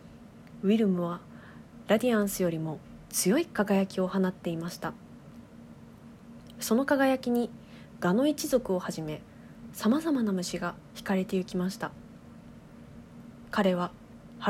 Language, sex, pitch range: Japanese, female, 180-245 Hz